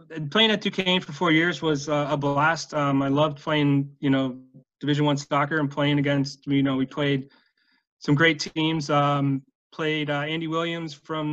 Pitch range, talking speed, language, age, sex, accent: 140-160 Hz, 185 wpm, English, 20-39, male, American